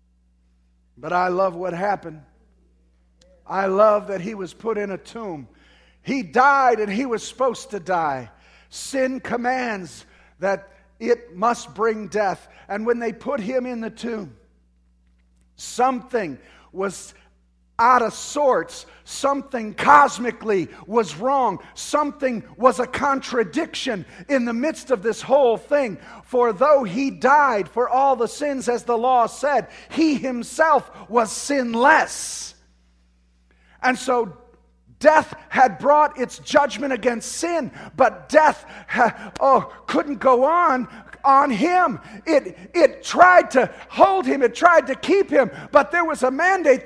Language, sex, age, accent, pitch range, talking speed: English, male, 50-69, American, 210-290 Hz, 135 wpm